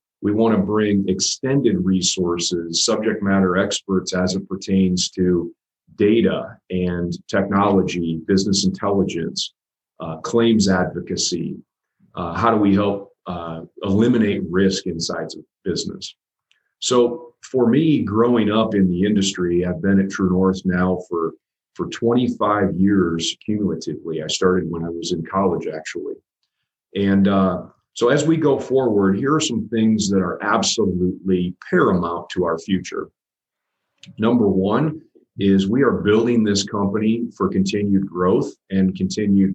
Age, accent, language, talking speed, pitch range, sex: 40-59, American, English, 140 wpm, 90-105 Hz, male